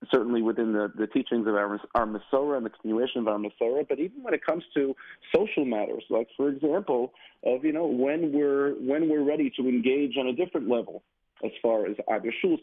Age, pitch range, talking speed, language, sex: 40-59, 115-140 Hz, 215 wpm, English, male